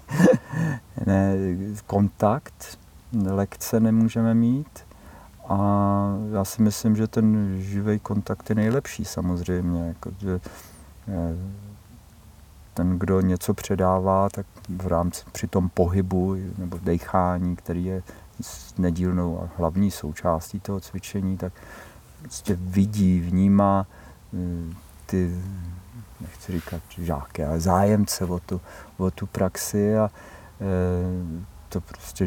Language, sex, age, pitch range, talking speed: Czech, male, 50-69, 85-100 Hz, 105 wpm